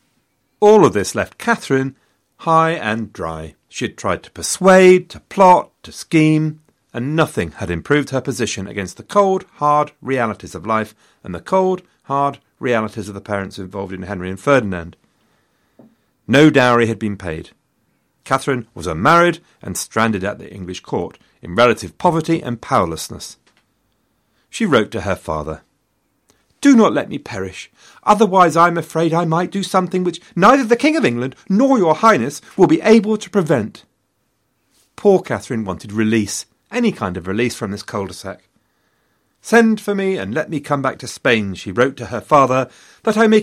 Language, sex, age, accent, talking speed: English, male, 50-69, British, 170 wpm